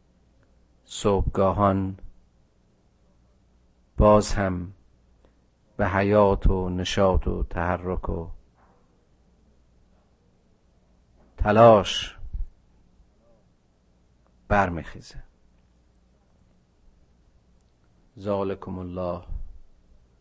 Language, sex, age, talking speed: Persian, male, 50-69, 40 wpm